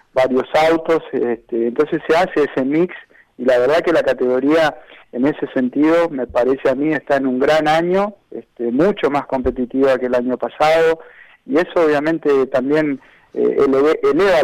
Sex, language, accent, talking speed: male, Spanish, Argentinian, 170 wpm